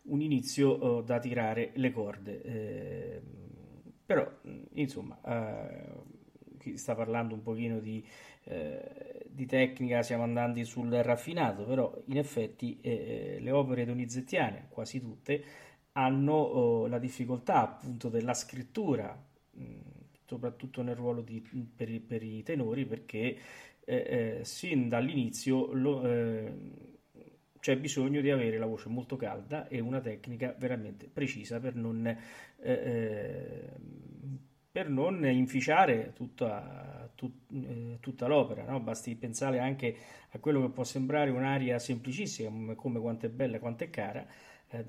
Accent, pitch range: native, 115-135 Hz